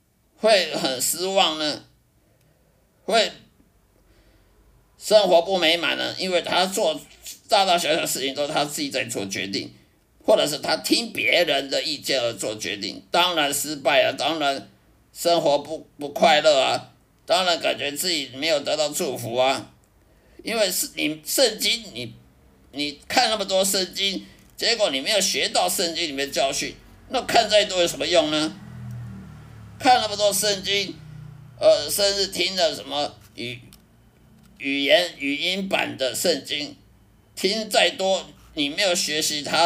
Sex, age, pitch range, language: male, 50-69, 140-195 Hz, Chinese